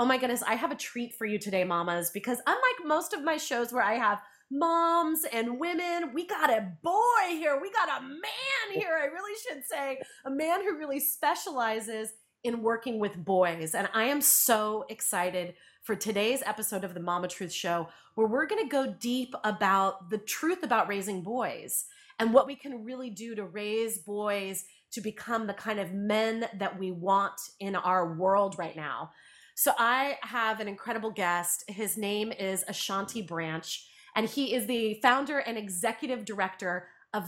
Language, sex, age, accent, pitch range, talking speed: English, female, 30-49, American, 200-270 Hz, 180 wpm